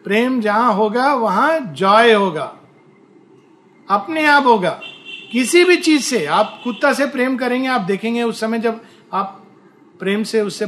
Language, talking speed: Hindi, 150 wpm